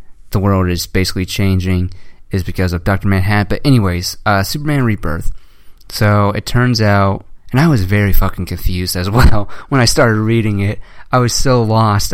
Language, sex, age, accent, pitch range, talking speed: English, male, 20-39, American, 95-110 Hz, 180 wpm